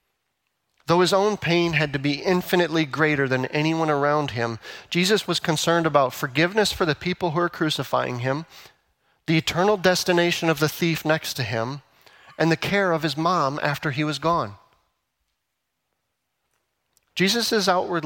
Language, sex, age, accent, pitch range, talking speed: English, male, 40-59, American, 130-175 Hz, 150 wpm